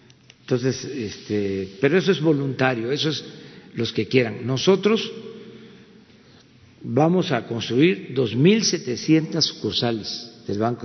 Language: Spanish